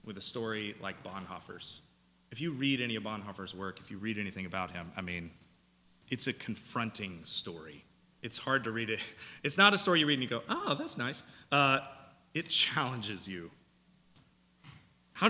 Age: 30-49